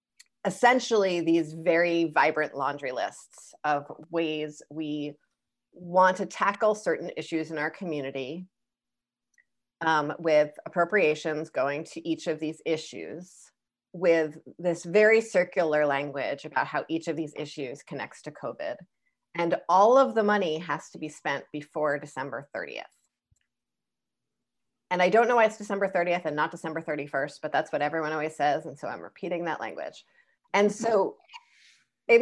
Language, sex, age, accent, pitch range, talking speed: English, female, 30-49, American, 155-210 Hz, 145 wpm